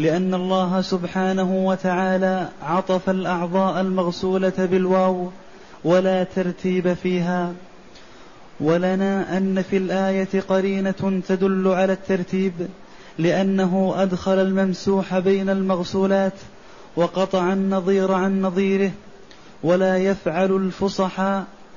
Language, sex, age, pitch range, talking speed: Arabic, male, 20-39, 185-195 Hz, 85 wpm